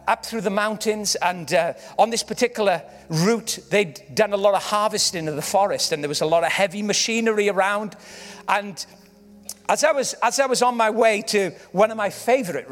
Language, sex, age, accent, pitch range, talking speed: English, male, 40-59, British, 180-235 Hz, 205 wpm